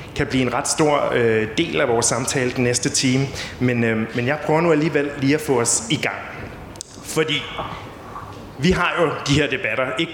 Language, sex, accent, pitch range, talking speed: Danish, male, native, 120-145 Hz, 190 wpm